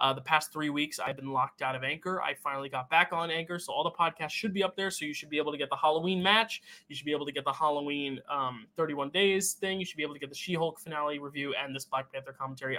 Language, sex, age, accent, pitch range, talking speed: English, male, 20-39, American, 140-170 Hz, 290 wpm